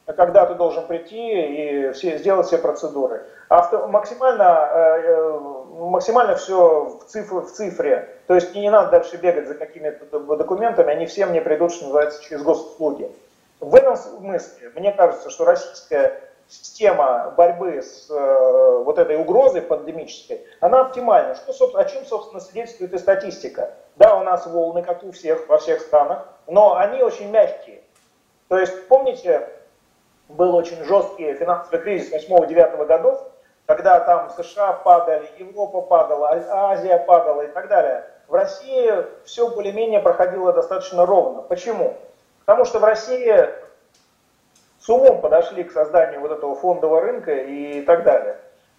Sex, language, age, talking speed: male, Russian, 40-59, 145 wpm